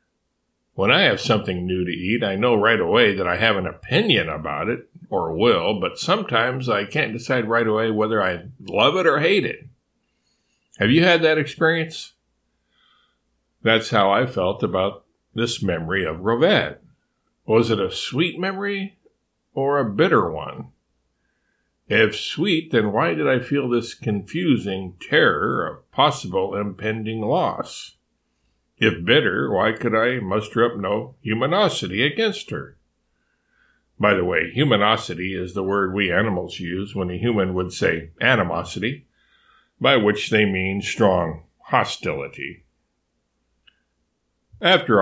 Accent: American